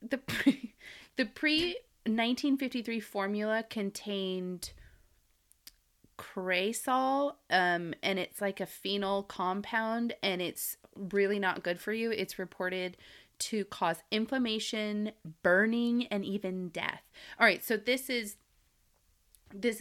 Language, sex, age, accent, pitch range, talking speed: English, female, 30-49, American, 190-255 Hz, 115 wpm